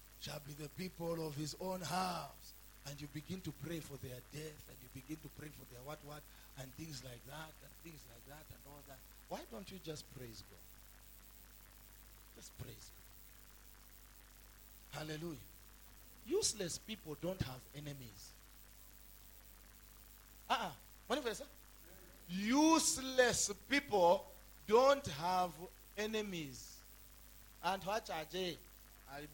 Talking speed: 125 wpm